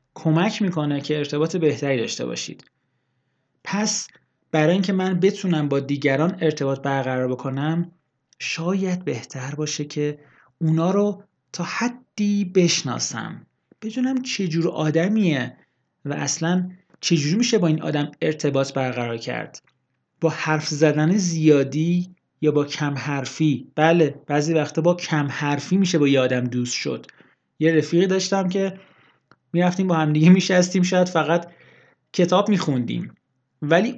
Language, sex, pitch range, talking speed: Persian, male, 135-175 Hz, 130 wpm